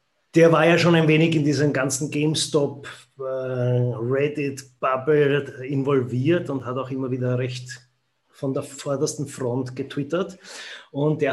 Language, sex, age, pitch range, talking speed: German, male, 30-49, 125-150 Hz, 145 wpm